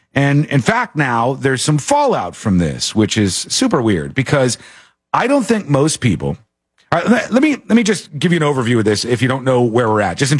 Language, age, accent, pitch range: English, 40-59, American, 115-170 Hz